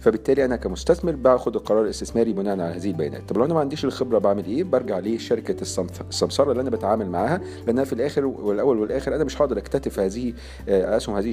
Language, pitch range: Arabic, 95-130 Hz